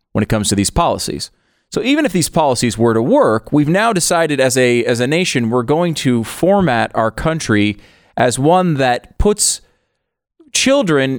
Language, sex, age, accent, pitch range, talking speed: English, male, 30-49, American, 95-130 Hz, 175 wpm